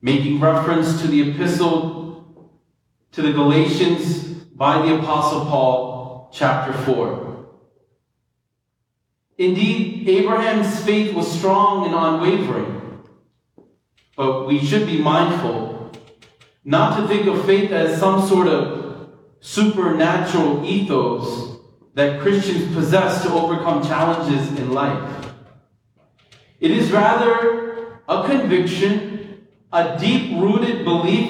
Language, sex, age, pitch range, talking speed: English, male, 40-59, 150-205 Hz, 100 wpm